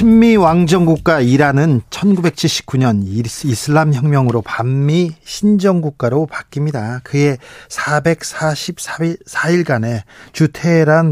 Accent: native